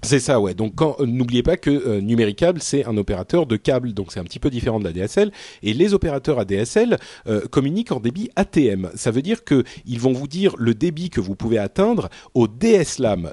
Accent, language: French, French